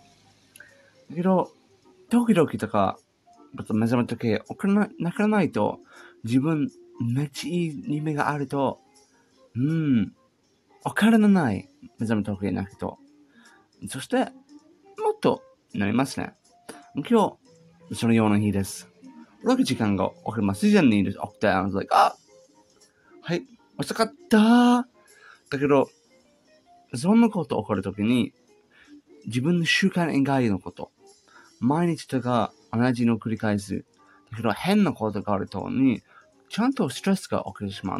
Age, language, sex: 30-49, Japanese, male